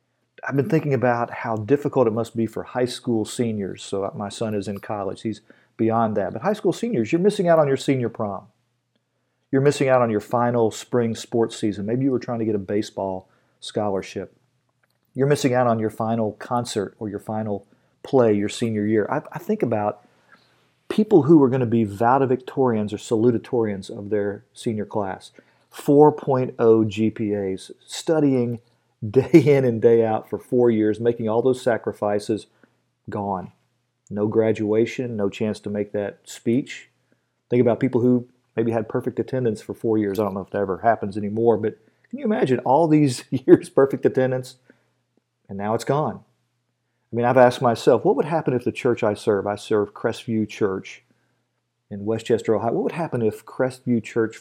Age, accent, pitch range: 40-59, American, 105-130 Hz